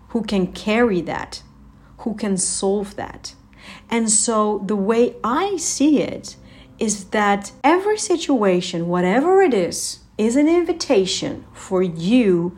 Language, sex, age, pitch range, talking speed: English, female, 40-59, 180-220 Hz, 130 wpm